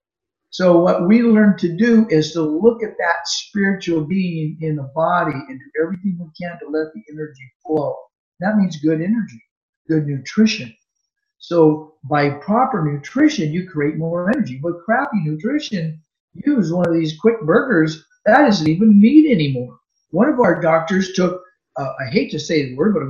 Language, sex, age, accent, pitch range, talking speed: English, male, 50-69, American, 155-220 Hz, 180 wpm